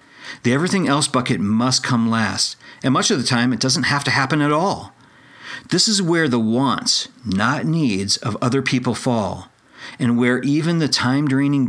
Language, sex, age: English, male, 50-69